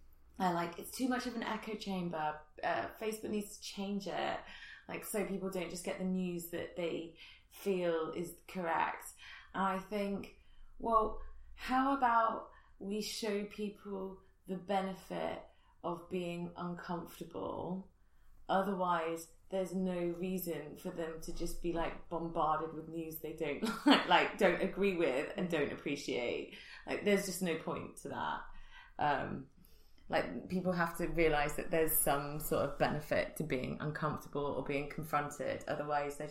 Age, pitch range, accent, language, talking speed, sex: 20-39, 150-190 Hz, British, English, 150 wpm, female